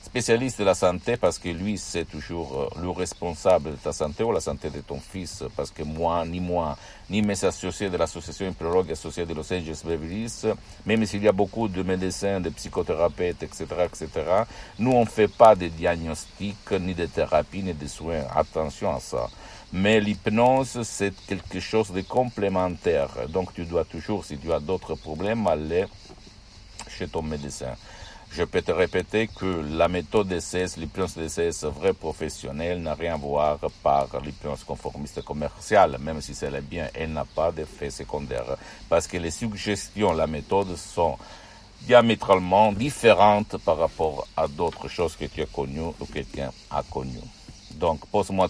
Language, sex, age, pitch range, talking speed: Italian, male, 60-79, 80-105 Hz, 175 wpm